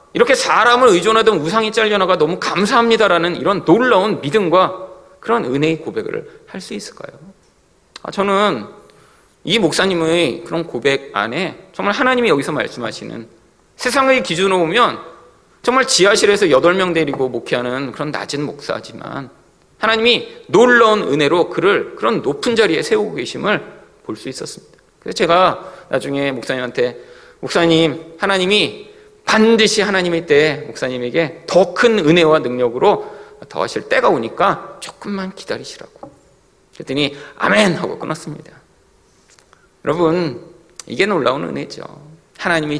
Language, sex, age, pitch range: Korean, male, 40-59, 150-225 Hz